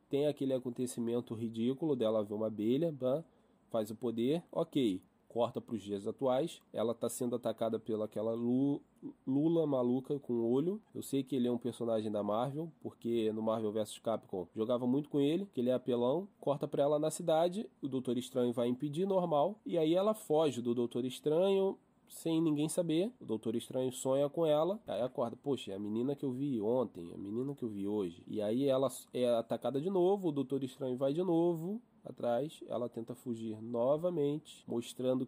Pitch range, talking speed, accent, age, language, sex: 115-145 Hz, 195 wpm, Brazilian, 20-39, Portuguese, male